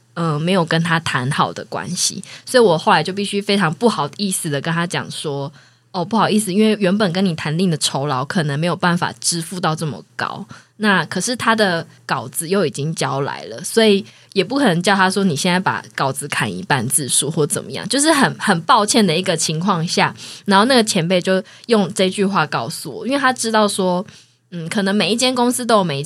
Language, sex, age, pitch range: Chinese, female, 20-39, 155-205 Hz